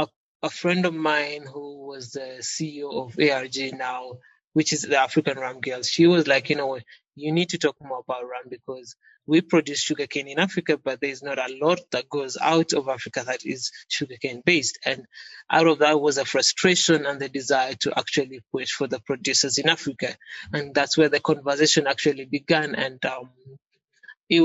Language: English